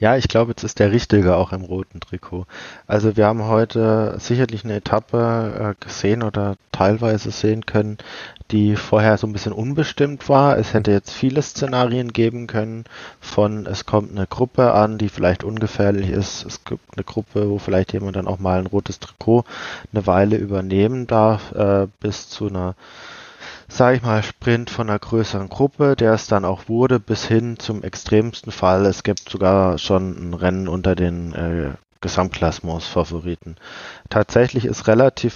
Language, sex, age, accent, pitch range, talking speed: German, male, 20-39, German, 100-115 Hz, 170 wpm